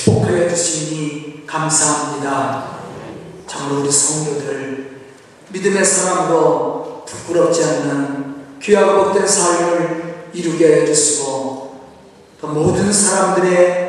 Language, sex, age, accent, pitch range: Korean, male, 40-59, native, 155-210 Hz